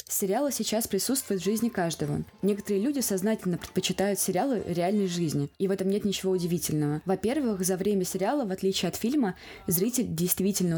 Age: 20-39